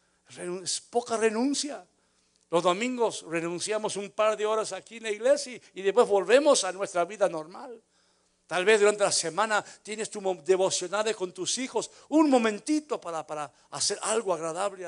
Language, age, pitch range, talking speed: Spanish, 60-79, 175-220 Hz, 160 wpm